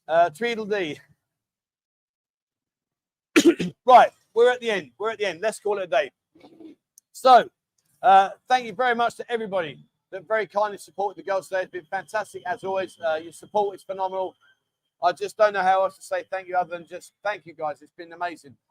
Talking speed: 190 wpm